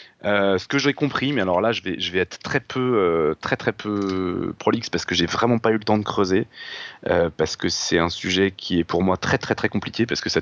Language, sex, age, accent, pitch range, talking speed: French, male, 30-49, French, 95-115 Hz, 265 wpm